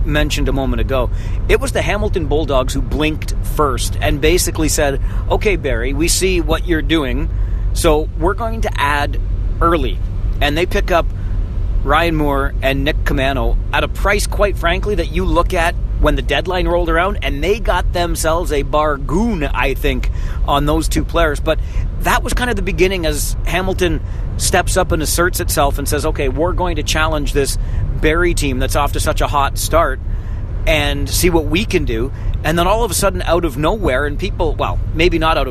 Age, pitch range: 40-59, 95-150 Hz